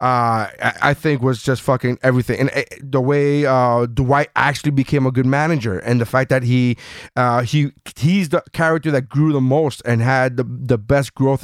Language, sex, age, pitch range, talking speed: English, male, 30-49, 115-135 Hz, 200 wpm